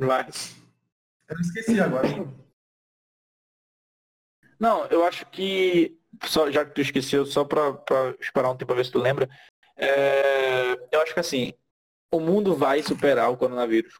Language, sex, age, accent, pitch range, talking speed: Portuguese, male, 20-39, Brazilian, 135-175 Hz, 140 wpm